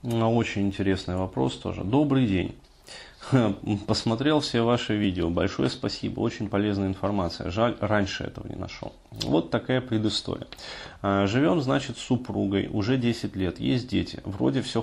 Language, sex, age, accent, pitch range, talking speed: Russian, male, 30-49, native, 100-125 Hz, 140 wpm